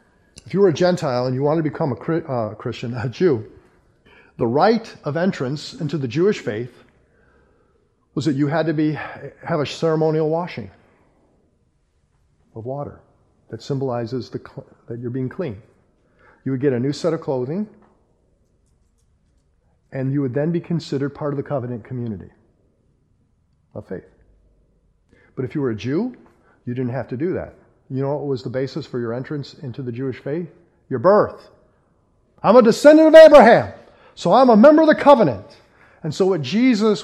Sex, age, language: male, 50-69, English